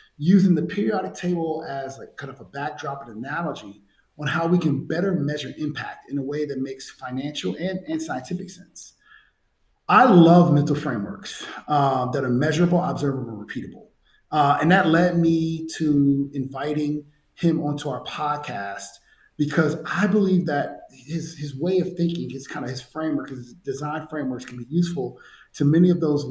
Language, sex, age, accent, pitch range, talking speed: English, male, 30-49, American, 140-175 Hz, 170 wpm